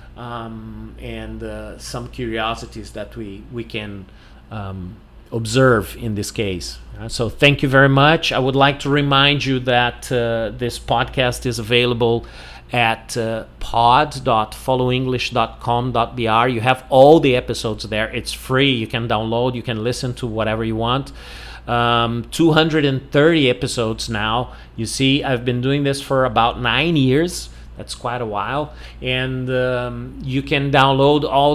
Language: English